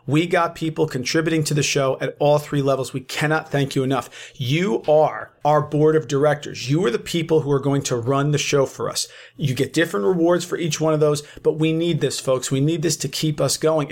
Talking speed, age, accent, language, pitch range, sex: 240 wpm, 40-59, American, English, 135-165 Hz, male